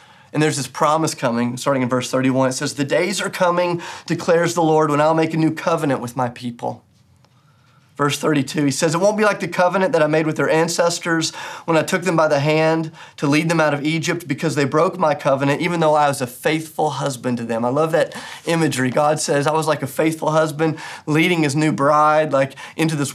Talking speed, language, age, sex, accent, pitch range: 230 wpm, English, 30-49, male, American, 135-160 Hz